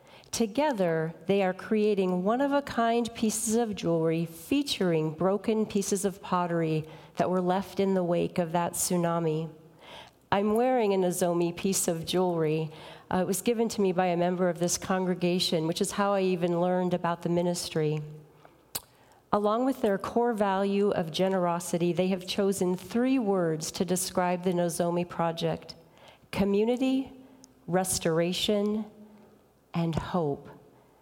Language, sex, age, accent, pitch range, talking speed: English, female, 40-59, American, 165-205 Hz, 135 wpm